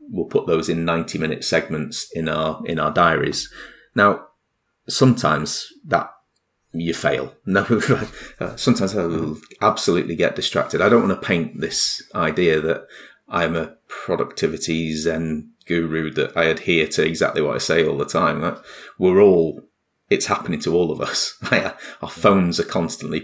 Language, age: English, 30-49